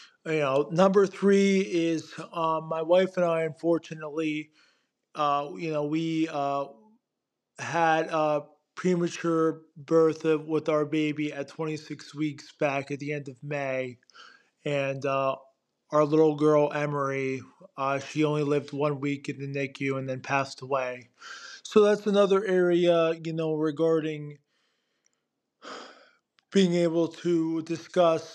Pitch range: 150-175 Hz